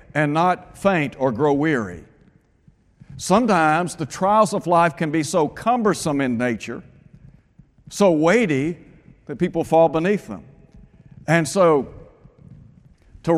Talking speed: 120 wpm